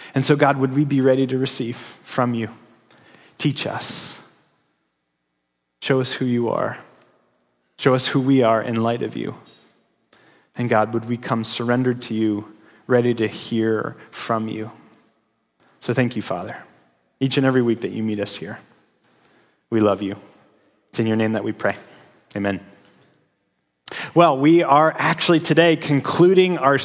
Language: English